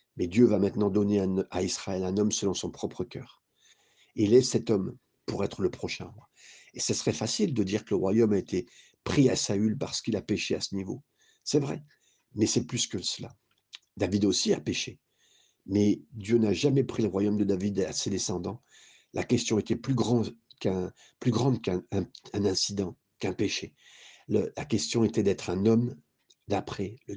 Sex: male